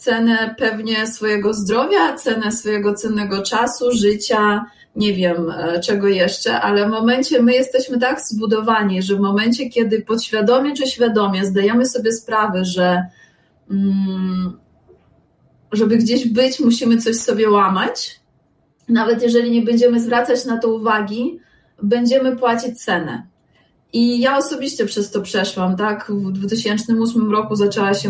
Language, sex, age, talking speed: Polish, female, 20-39, 130 wpm